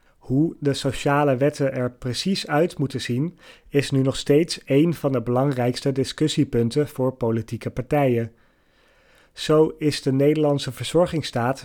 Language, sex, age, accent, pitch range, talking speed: Dutch, male, 30-49, Dutch, 120-150 Hz, 135 wpm